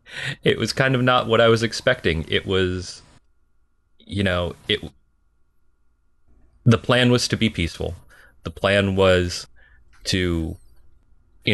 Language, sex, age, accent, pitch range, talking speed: English, male, 30-49, American, 80-95 Hz, 130 wpm